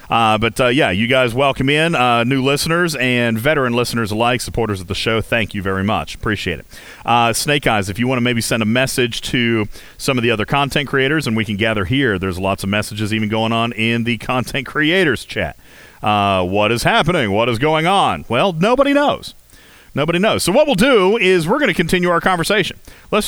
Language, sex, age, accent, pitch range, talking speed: English, male, 40-59, American, 105-160 Hz, 220 wpm